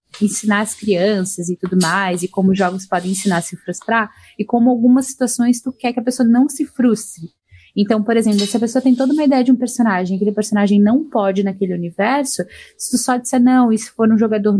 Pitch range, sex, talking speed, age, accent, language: 210-255 Hz, female, 230 wpm, 10-29, Brazilian, Portuguese